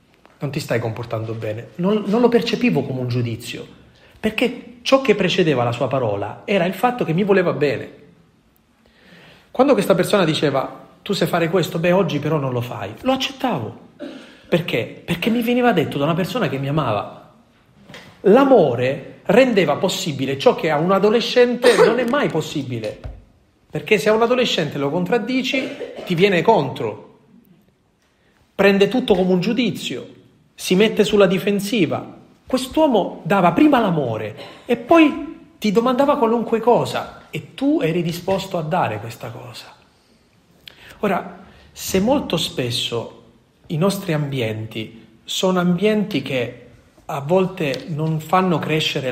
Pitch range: 140-220 Hz